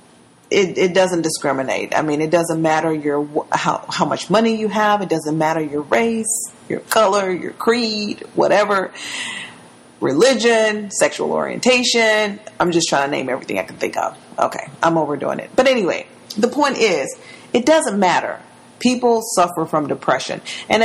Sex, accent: female, American